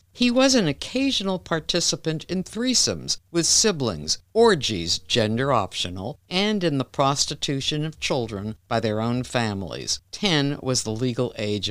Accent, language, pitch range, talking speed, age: American, English, 110-155 Hz, 140 wpm, 60-79